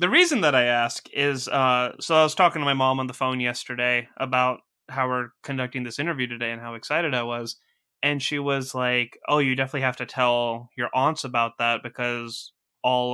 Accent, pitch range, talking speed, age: American, 120-140 Hz, 210 wpm, 20-39